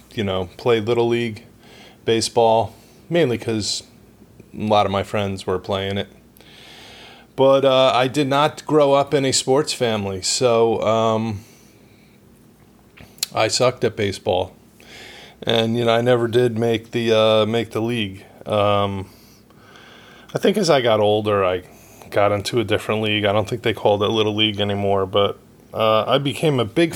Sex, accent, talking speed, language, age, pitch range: male, American, 160 wpm, English, 20-39, 100-120 Hz